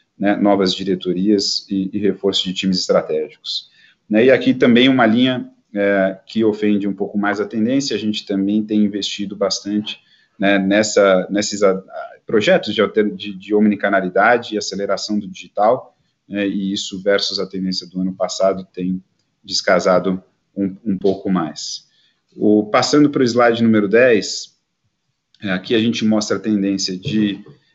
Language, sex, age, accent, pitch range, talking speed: Portuguese, male, 40-59, Brazilian, 95-105 Hz, 145 wpm